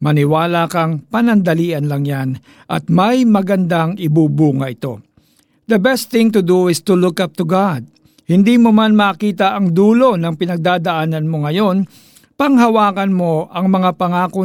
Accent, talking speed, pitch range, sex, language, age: native, 150 wpm, 150-200 Hz, male, Filipino, 50-69